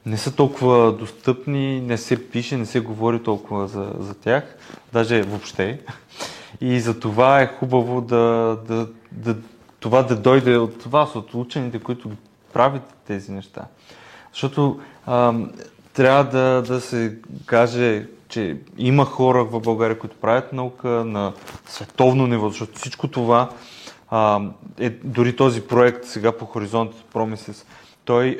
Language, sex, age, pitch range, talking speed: Bulgarian, male, 20-39, 115-130 Hz, 140 wpm